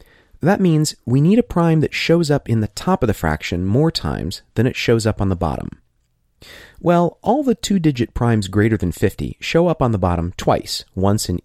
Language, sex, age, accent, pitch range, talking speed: English, male, 30-49, American, 95-140 Hz, 210 wpm